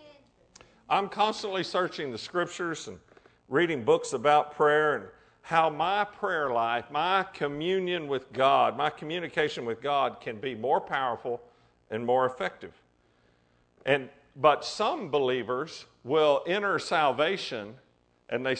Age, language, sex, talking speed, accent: 50-69, English, male, 125 wpm, American